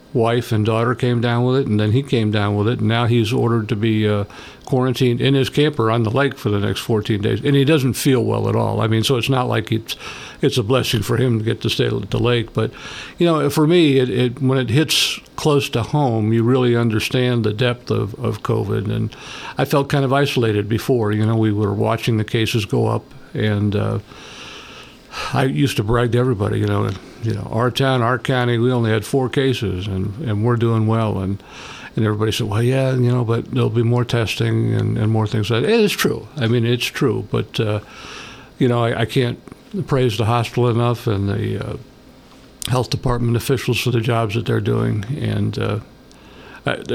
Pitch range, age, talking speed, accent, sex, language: 110-130 Hz, 60-79, 220 wpm, American, male, English